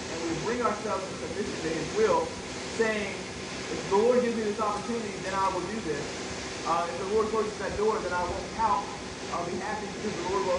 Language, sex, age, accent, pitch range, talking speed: English, male, 20-39, American, 195-235 Hz, 225 wpm